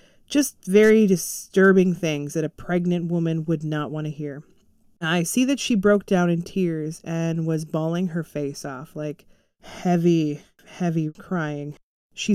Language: English